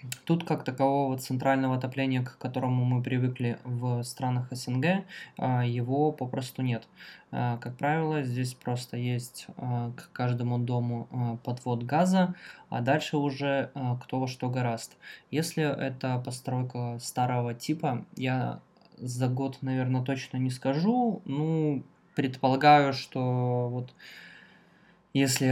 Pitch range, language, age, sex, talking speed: 125-135 Hz, Russian, 20-39, male, 115 wpm